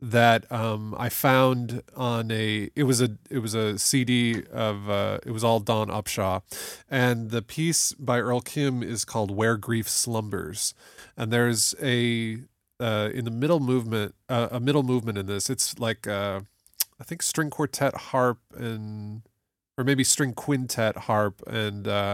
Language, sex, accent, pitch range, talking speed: English, male, American, 105-130 Hz, 165 wpm